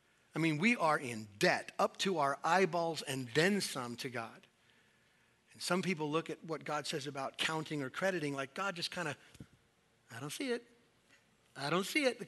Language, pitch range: English, 135-195 Hz